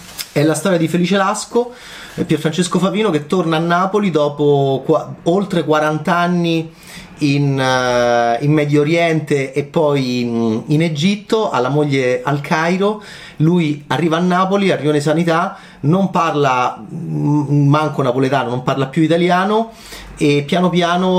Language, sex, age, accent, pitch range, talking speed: Italian, male, 30-49, native, 125-170 Hz, 135 wpm